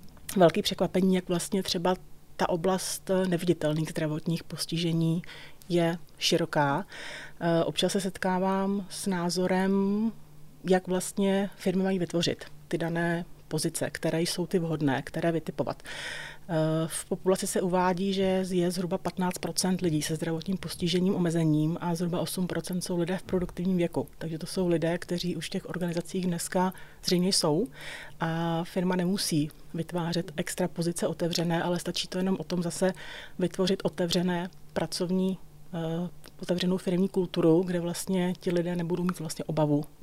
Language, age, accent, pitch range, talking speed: Czech, 30-49, native, 165-190 Hz, 140 wpm